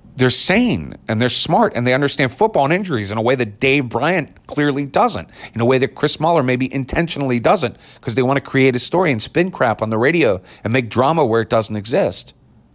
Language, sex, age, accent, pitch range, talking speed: English, male, 50-69, American, 120-180 Hz, 220 wpm